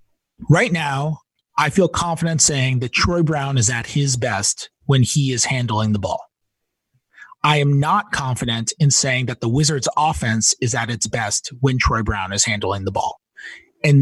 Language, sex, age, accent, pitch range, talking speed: English, male, 30-49, American, 125-160 Hz, 175 wpm